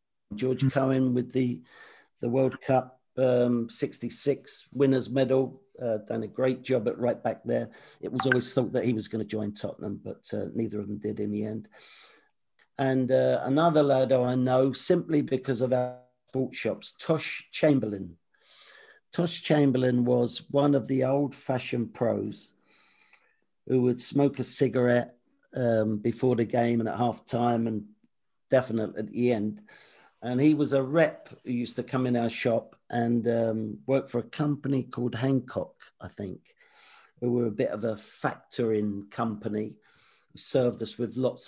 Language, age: English, 50-69